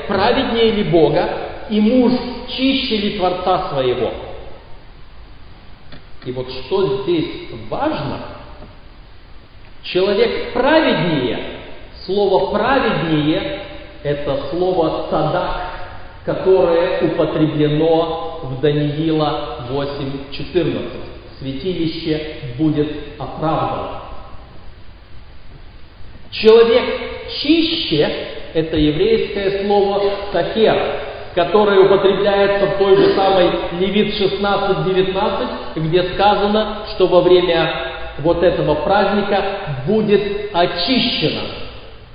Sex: male